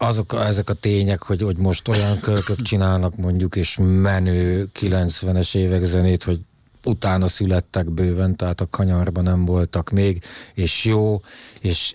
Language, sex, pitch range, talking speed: Hungarian, male, 90-110 Hz, 145 wpm